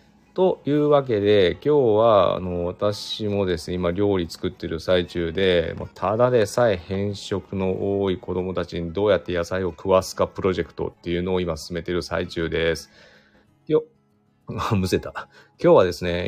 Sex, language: male, Japanese